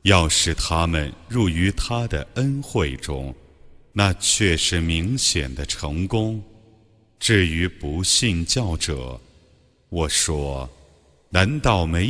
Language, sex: Chinese, male